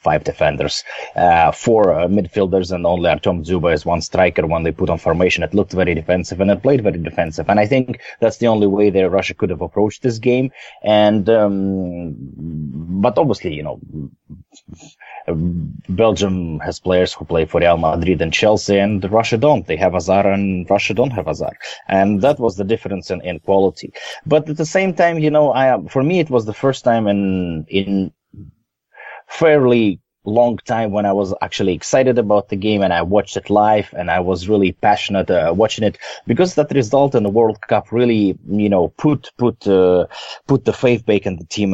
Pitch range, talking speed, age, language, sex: 90-115 Hz, 195 wpm, 30-49, English, male